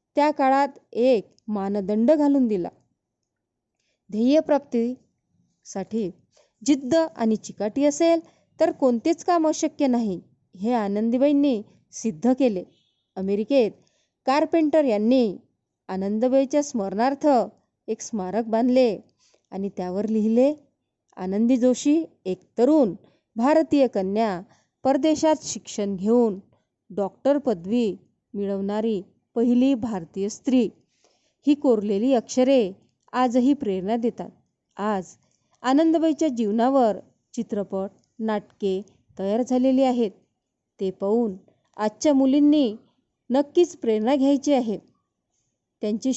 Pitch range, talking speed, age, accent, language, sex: 205-275 Hz, 95 wpm, 20-39, native, Marathi, female